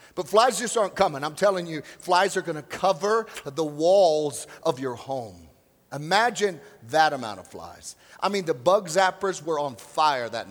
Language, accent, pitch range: English, American, 165-215 Hz